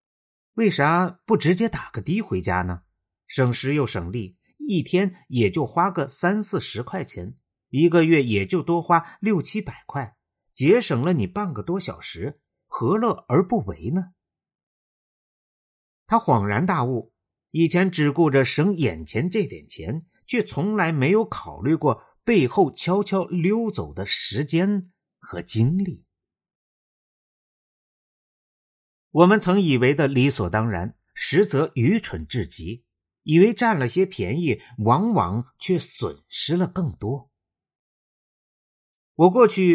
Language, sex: Chinese, male